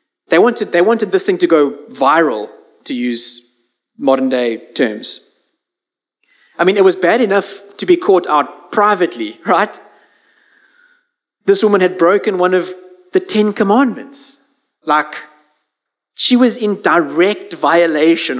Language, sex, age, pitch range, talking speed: English, male, 30-49, 145-235 Hz, 135 wpm